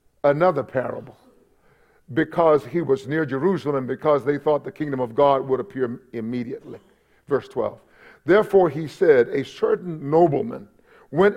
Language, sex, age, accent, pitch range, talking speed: English, male, 50-69, American, 145-195 Hz, 135 wpm